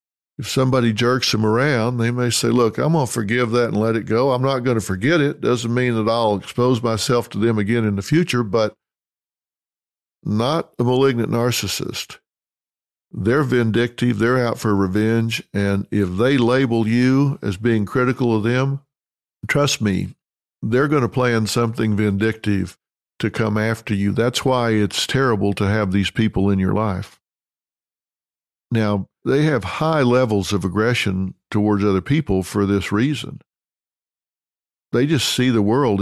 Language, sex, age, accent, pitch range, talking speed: English, male, 50-69, American, 100-125 Hz, 160 wpm